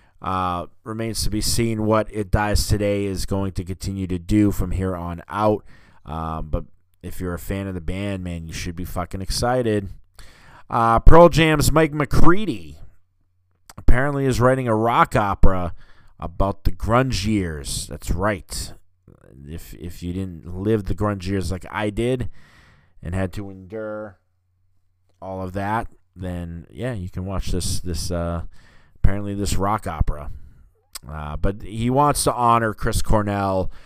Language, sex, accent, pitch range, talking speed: English, male, American, 90-105 Hz, 160 wpm